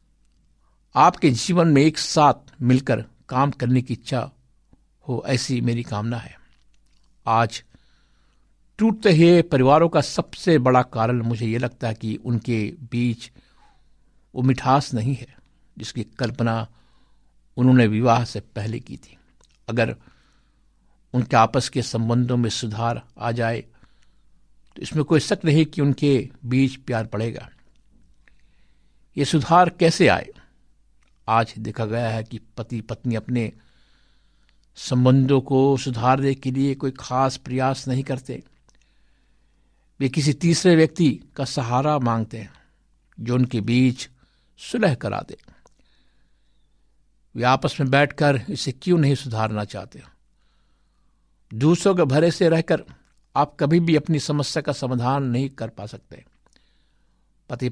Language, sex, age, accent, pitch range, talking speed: Hindi, male, 60-79, native, 115-140 Hz, 125 wpm